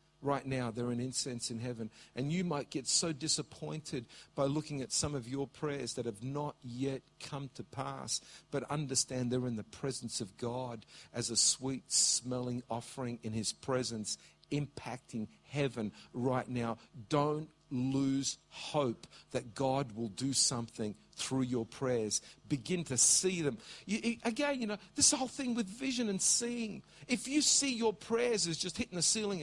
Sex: male